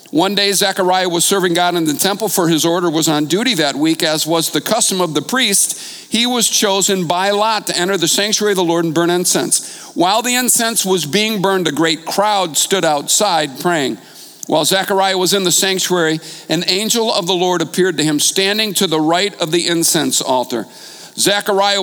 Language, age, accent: English, 50-69, American